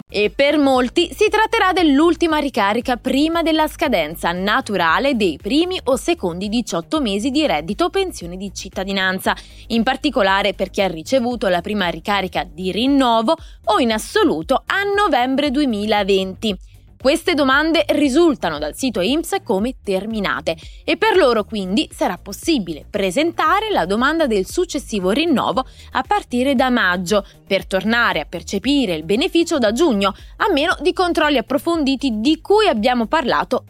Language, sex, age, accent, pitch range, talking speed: Italian, female, 20-39, native, 195-315 Hz, 140 wpm